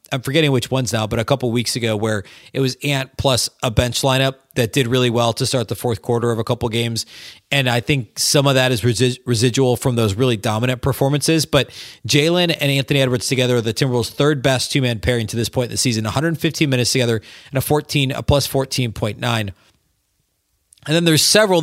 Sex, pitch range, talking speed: male, 115-145 Hz, 220 wpm